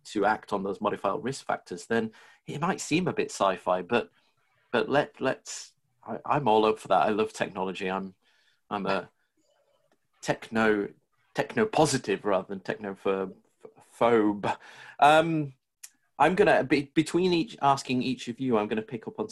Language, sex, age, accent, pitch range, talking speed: English, male, 30-49, British, 100-120 Hz, 160 wpm